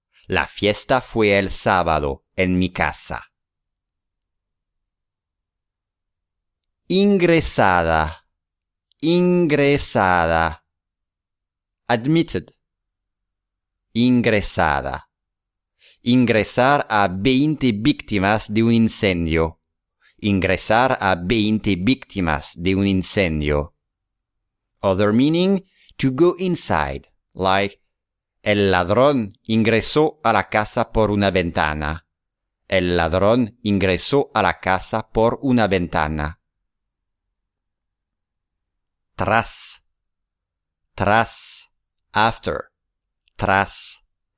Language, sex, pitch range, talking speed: English, male, 85-115 Hz, 75 wpm